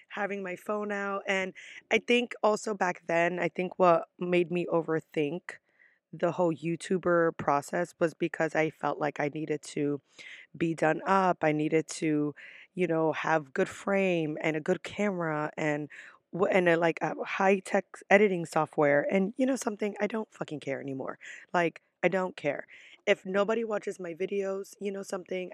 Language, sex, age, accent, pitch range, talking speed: English, female, 20-39, American, 160-195 Hz, 170 wpm